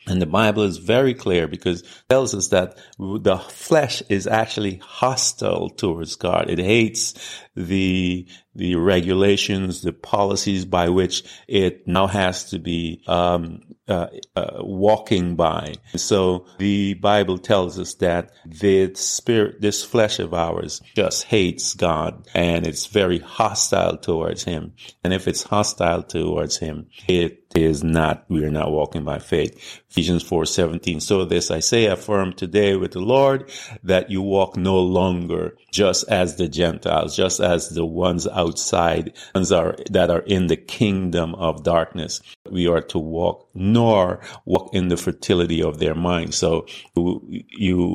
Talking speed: 155 wpm